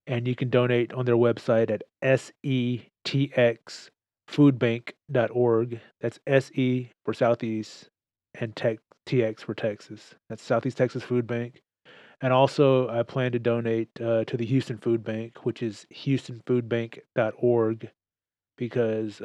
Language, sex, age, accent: English, male, 30-49, American